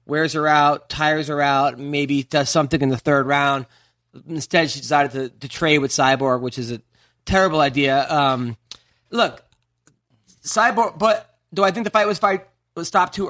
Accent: American